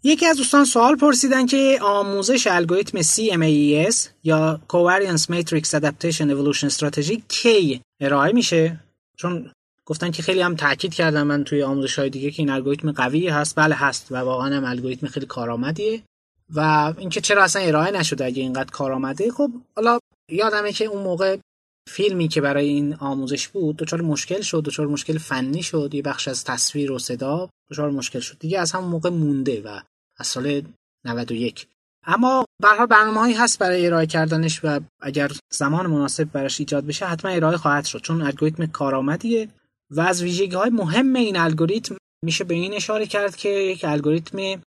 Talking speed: 170 wpm